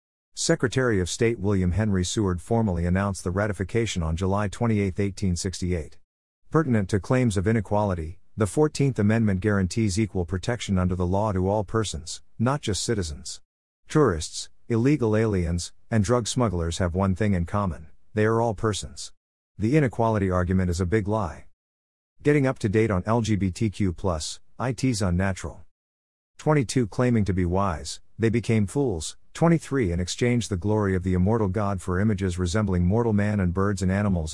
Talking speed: 155 wpm